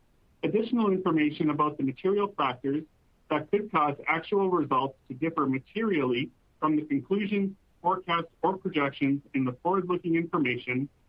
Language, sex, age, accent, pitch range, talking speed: English, male, 40-59, American, 140-175 Hz, 130 wpm